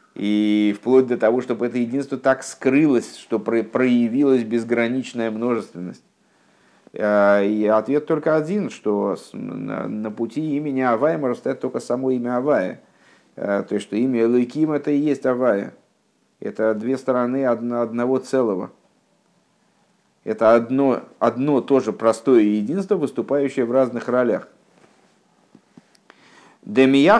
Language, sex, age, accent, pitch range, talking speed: Russian, male, 50-69, native, 110-140 Hz, 115 wpm